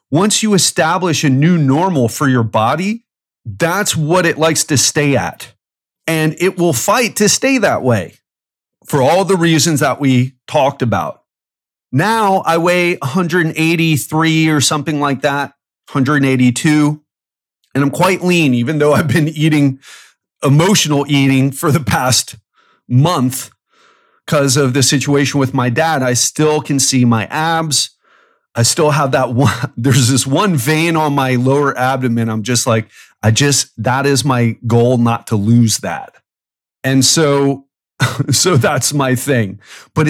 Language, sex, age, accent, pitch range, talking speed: English, male, 30-49, American, 130-165 Hz, 155 wpm